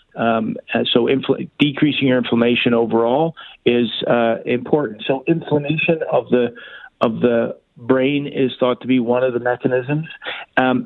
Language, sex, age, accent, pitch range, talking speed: English, male, 50-69, American, 120-135 Hz, 145 wpm